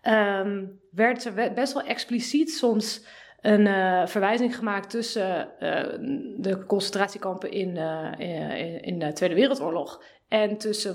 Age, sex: 20-39, female